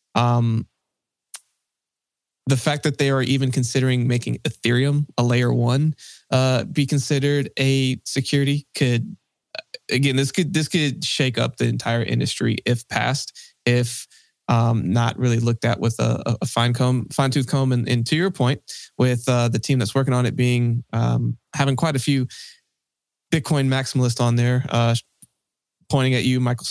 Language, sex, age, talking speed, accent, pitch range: English, male, 20-39, 165 wpm, American, 120-135 Hz